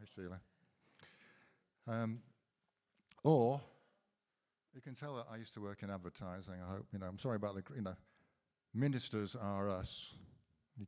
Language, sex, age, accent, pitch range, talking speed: English, male, 60-79, British, 95-125 Hz, 145 wpm